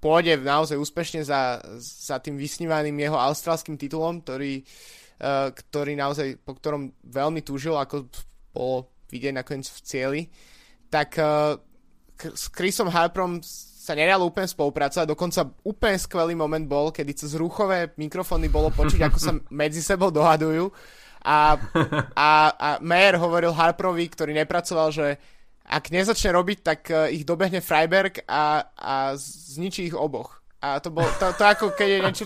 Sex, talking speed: male, 150 wpm